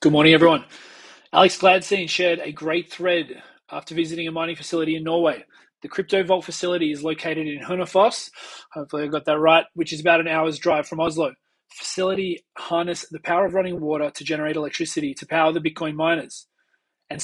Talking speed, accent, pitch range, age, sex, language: 180 wpm, Australian, 155-180 Hz, 20-39, male, English